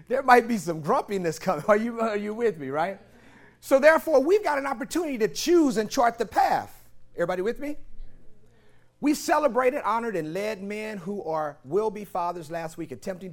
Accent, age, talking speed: American, 40-59, 185 wpm